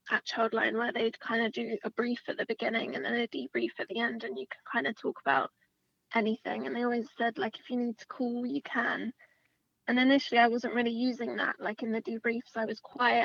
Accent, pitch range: British, 220-245 Hz